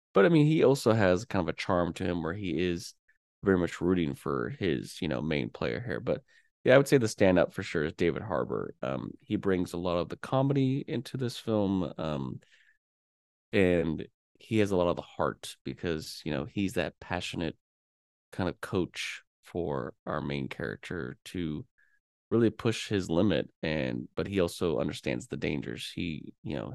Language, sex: English, male